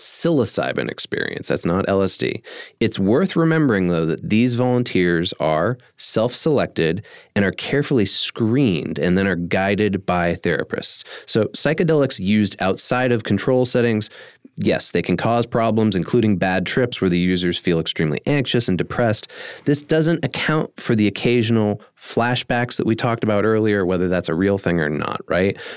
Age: 30-49